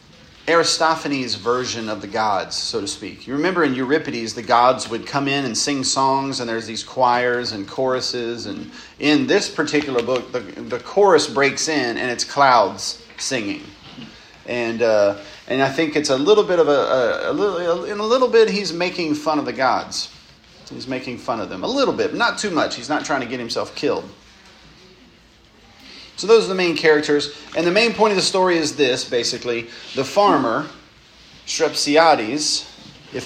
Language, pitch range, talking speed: English, 125-160 Hz, 190 wpm